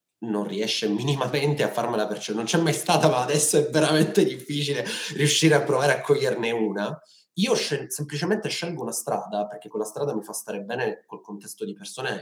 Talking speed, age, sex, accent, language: 180 wpm, 20-39, male, native, Italian